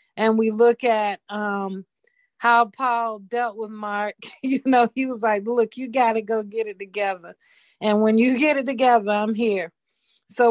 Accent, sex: American, female